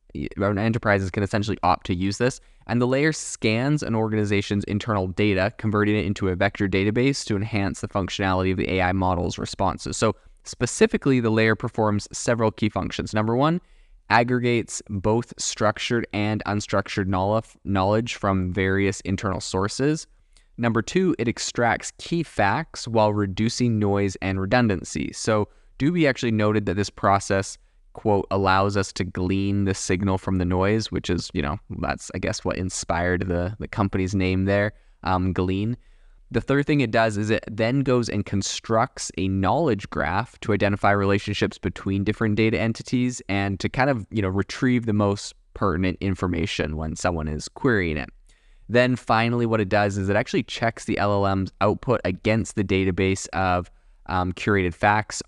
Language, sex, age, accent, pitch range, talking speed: English, male, 20-39, American, 95-110 Hz, 165 wpm